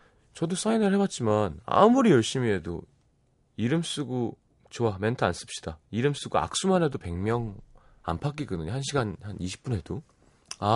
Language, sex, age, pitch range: Korean, male, 30-49, 100-150 Hz